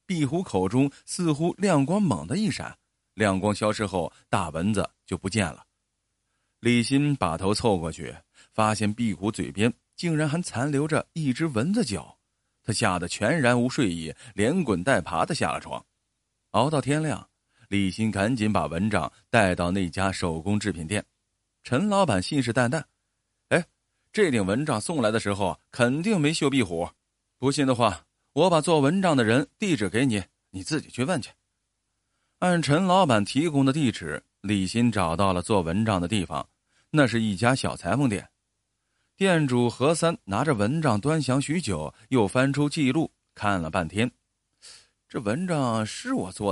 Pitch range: 100-145 Hz